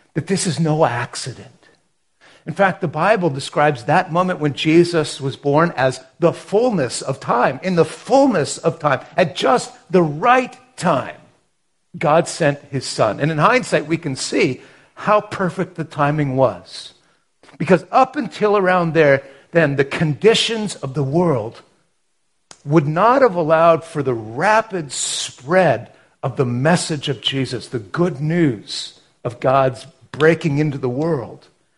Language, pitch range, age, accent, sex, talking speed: English, 145-190 Hz, 50-69, American, male, 150 wpm